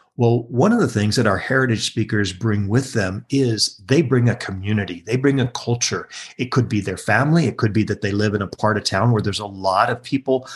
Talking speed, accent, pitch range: 245 wpm, American, 105-130 Hz